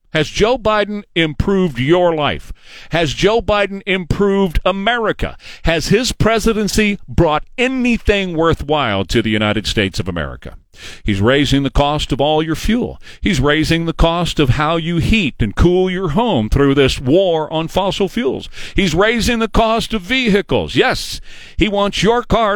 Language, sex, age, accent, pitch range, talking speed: English, male, 50-69, American, 145-205 Hz, 160 wpm